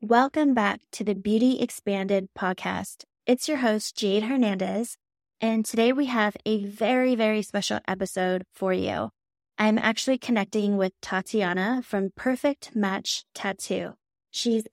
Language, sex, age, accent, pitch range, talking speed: English, female, 20-39, American, 195-230 Hz, 135 wpm